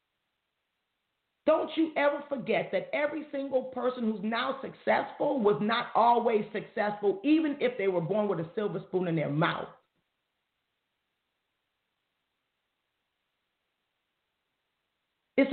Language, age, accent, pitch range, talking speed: English, 50-69, American, 190-255 Hz, 110 wpm